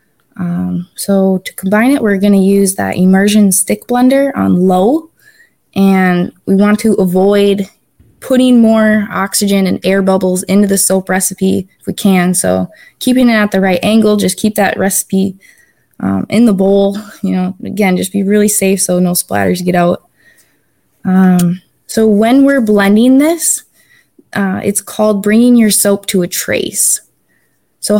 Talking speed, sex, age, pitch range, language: 165 wpm, female, 20-39, 190-220 Hz, English